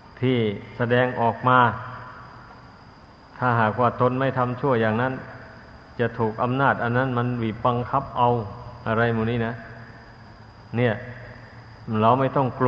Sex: male